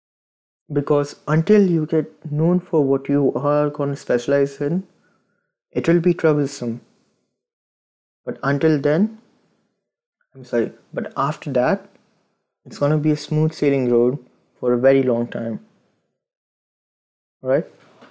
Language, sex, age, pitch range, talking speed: English, male, 20-39, 125-145 Hz, 130 wpm